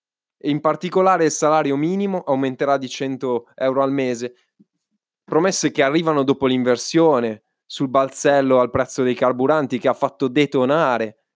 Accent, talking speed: native, 135 wpm